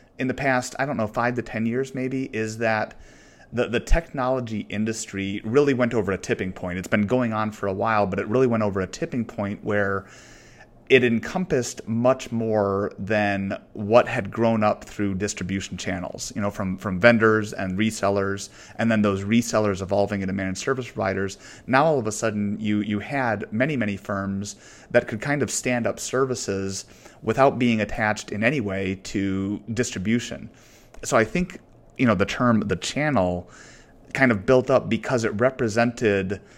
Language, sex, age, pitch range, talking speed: English, male, 30-49, 100-120 Hz, 180 wpm